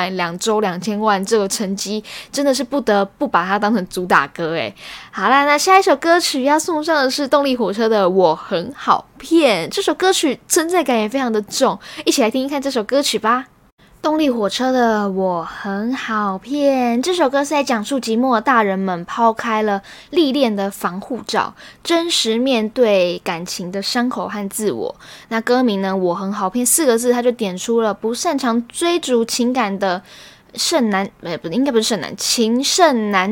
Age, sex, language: 10-29, female, Chinese